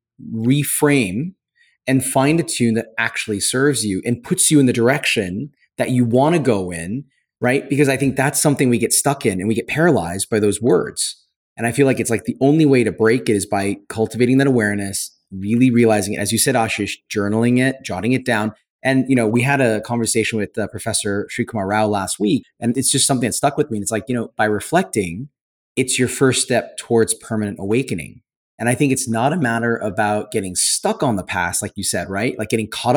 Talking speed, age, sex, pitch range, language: 225 wpm, 30-49, male, 105-135 Hz, English